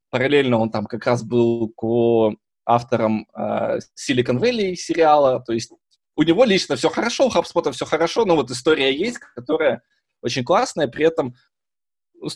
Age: 20-39